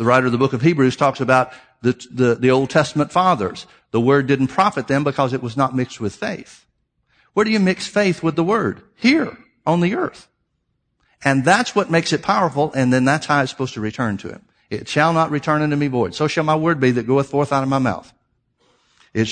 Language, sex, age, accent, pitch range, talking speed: English, male, 50-69, American, 130-165 Hz, 235 wpm